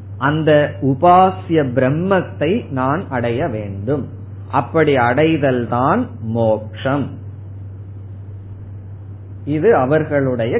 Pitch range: 105-160 Hz